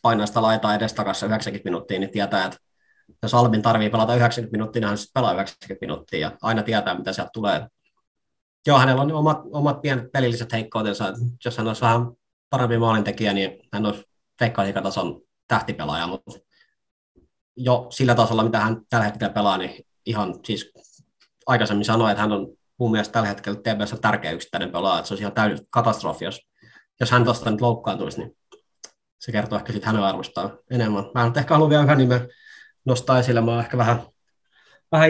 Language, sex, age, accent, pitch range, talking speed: Finnish, male, 20-39, native, 105-125 Hz, 180 wpm